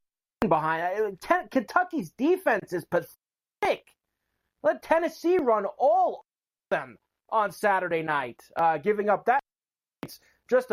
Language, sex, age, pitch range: English, male, 30-49, 180-260 Hz